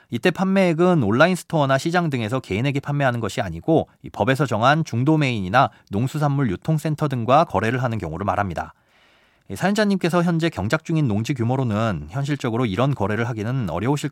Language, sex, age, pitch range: Korean, male, 30-49, 110-155 Hz